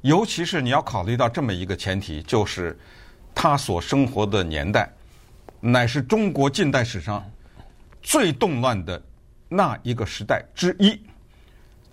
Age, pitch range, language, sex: 50-69, 95-140 Hz, Chinese, male